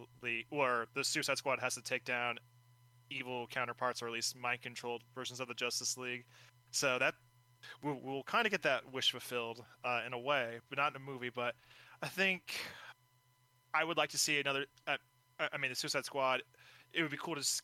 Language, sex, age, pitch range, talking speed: English, male, 20-39, 125-135 Hz, 210 wpm